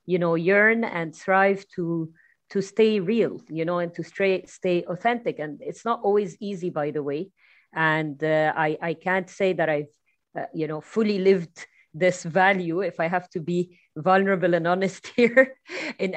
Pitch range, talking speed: 165-200 Hz, 180 wpm